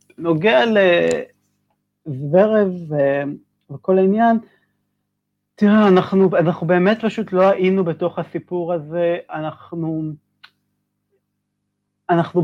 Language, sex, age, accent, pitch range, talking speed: Hebrew, male, 30-49, native, 150-195 Hz, 75 wpm